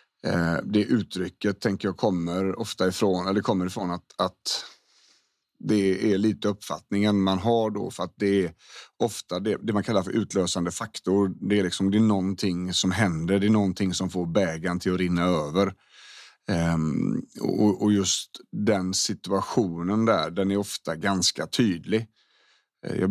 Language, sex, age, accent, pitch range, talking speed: Swedish, male, 30-49, native, 90-105 Hz, 150 wpm